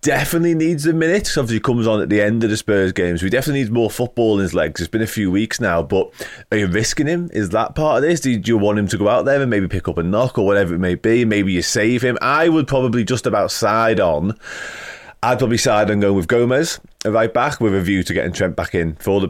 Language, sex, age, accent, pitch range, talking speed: English, male, 20-39, British, 95-115 Hz, 280 wpm